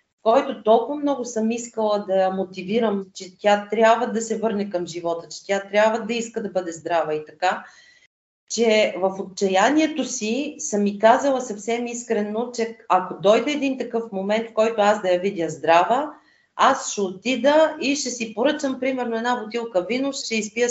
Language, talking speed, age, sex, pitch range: Bulgarian, 175 wpm, 40-59, female, 195-255 Hz